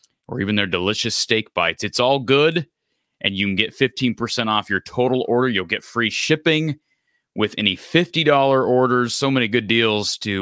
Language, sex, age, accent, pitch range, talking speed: English, male, 30-49, American, 100-140 Hz, 180 wpm